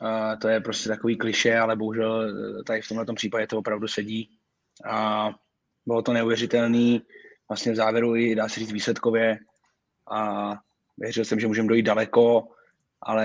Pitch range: 105-115 Hz